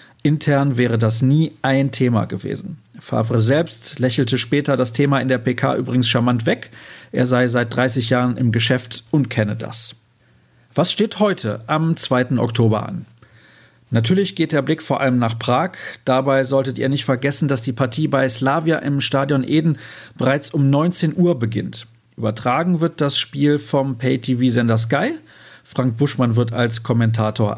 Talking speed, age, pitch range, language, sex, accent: 160 wpm, 40-59, 115-145 Hz, German, male, German